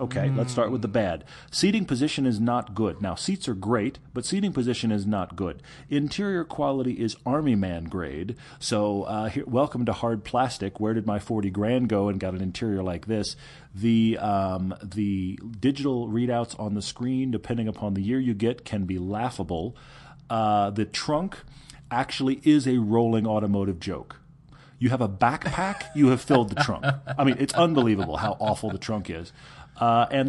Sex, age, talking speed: male, 40-59, 180 wpm